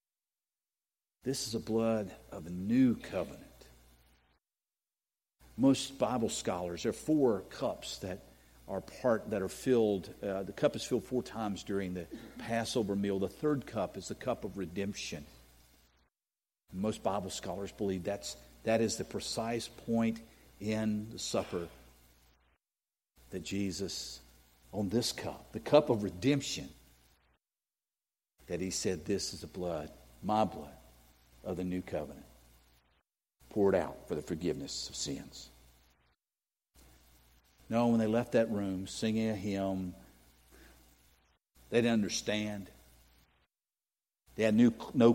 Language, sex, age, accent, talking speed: English, male, 50-69, American, 130 wpm